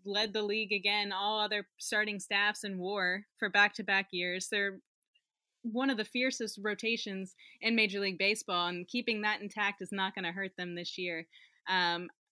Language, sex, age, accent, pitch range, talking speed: English, female, 20-39, American, 195-225 Hz, 175 wpm